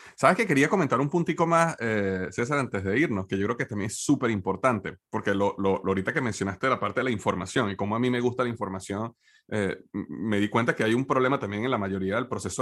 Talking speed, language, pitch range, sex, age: 250 wpm, Spanish, 105-135 Hz, male, 30-49